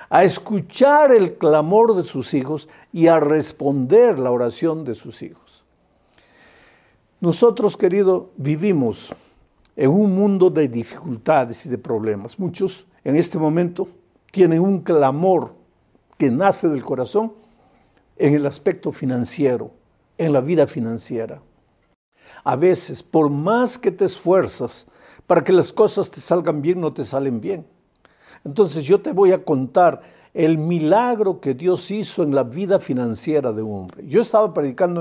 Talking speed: 145 wpm